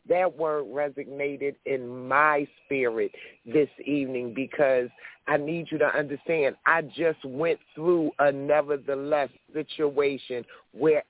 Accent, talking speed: American, 120 wpm